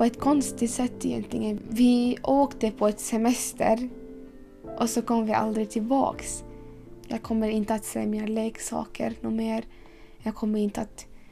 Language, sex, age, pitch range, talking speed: Swedish, female, 10-29, 220-245 Hz, 150 wpm